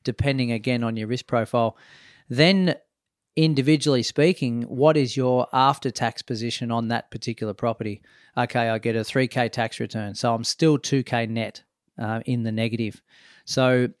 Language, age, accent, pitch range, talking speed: English, 40-59, Australian, 115-135 Hz, 150 wpm